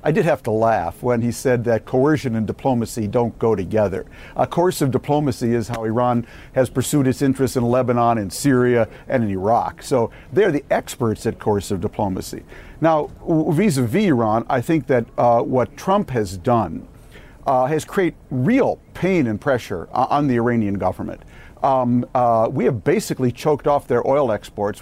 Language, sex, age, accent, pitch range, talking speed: English, male, 60-79, American, 120-155 Hz, 175 wpm